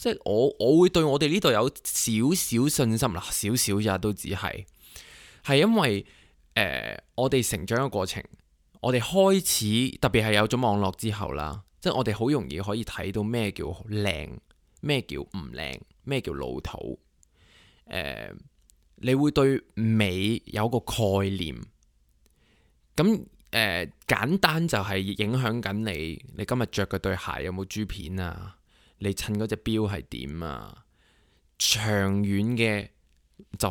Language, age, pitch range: Chinese, 20-39, 95-120 Hz